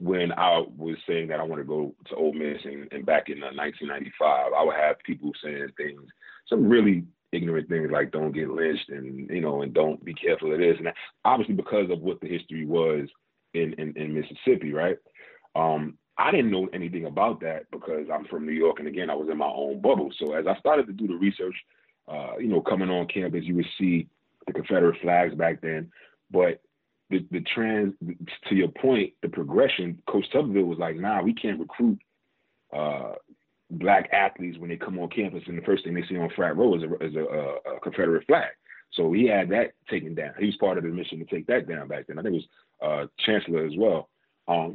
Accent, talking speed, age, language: American, 220 wpm, 30-49, English